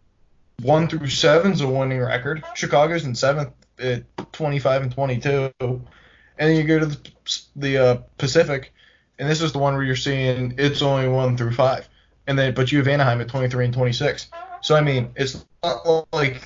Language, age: English, 20-39